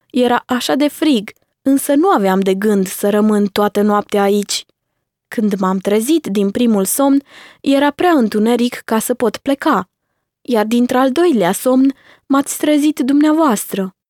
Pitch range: 205-270 Hz